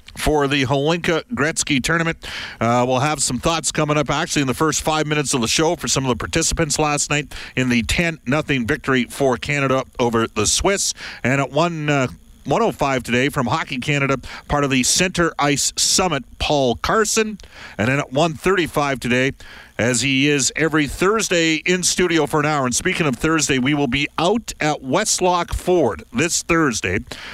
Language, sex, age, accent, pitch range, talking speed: English, male, 50-69, American, 120-155 Hz, 180 wpm